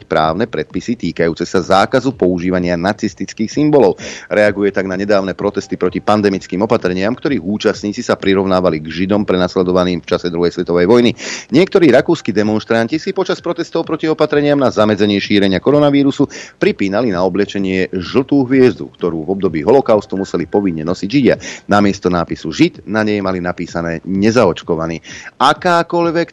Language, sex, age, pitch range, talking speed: Slovak, male, 30-49, 90-130 Hz, 140 wpm